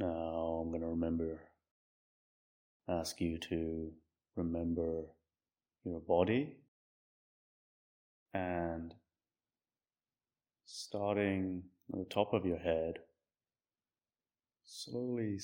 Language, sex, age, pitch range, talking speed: English, male, 30-49, 80-90 Hz, 80 wpm